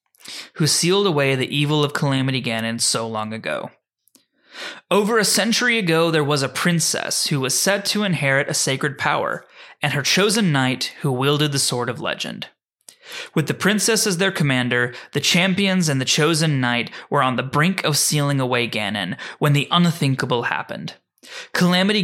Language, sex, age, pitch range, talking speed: English, male, 20-39, 130-165 Hz, 170 wpm